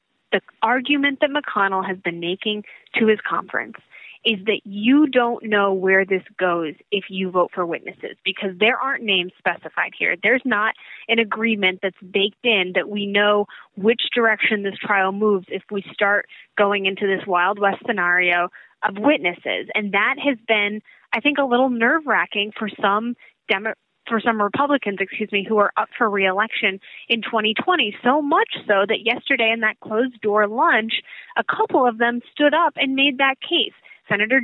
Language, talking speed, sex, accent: English, 180 wpm, female, American